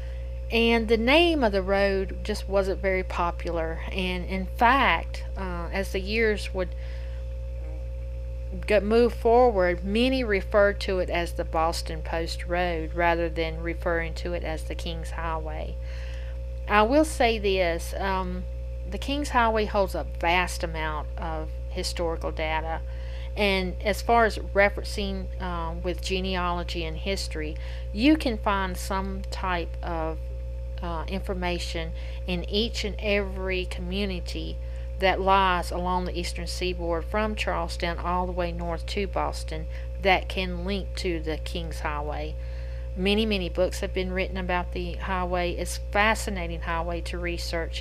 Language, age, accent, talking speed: English, 50-69, American, 140 wpm